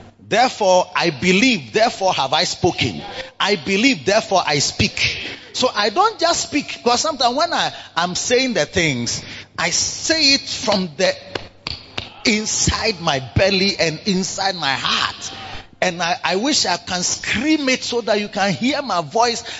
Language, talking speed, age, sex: English, 155 wpm, 30-49, male